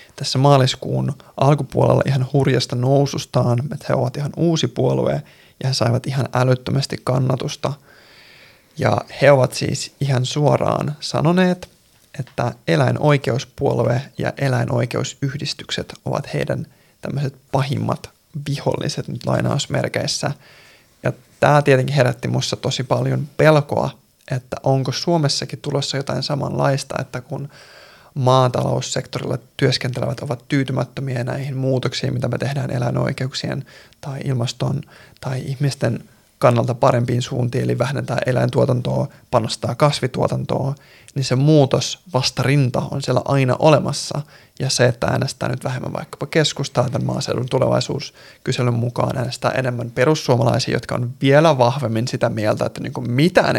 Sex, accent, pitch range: male, native, 125-145 Hz